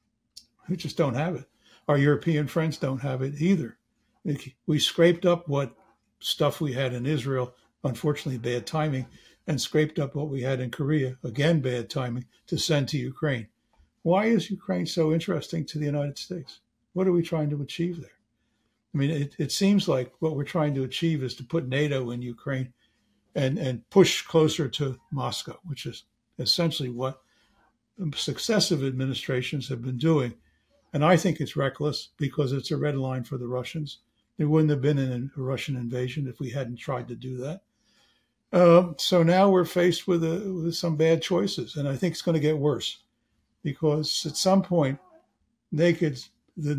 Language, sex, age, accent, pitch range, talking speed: English, male, 60-79, American, 130-165 Hz, 180 wpm